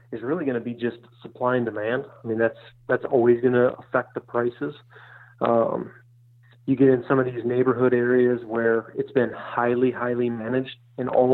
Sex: male